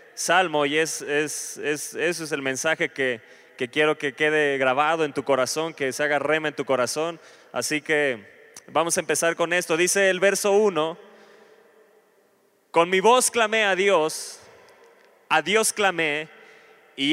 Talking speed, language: 165 wpm, Italian